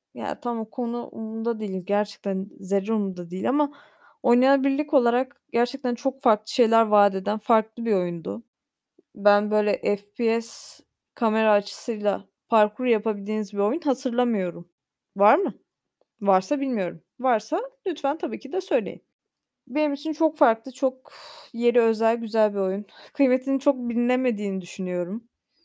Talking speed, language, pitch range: 125 wpm, Turkish, 215-275 Hz